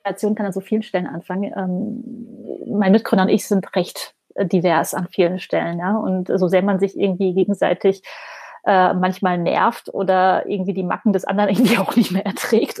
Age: 30-49